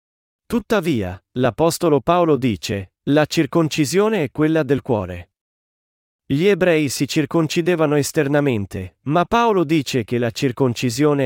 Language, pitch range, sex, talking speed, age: Italian, 115-155 Hz, male, 110 wpm, 30-49